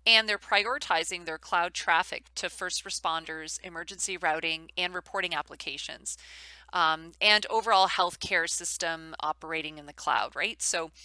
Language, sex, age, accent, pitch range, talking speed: English, female, 30-49, American, 165-205 Hz, 135 wpm